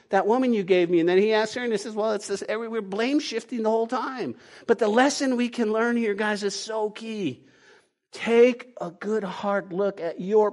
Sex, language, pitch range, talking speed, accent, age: male, English, 195-240 Hz, 220 wpm, American, 50-69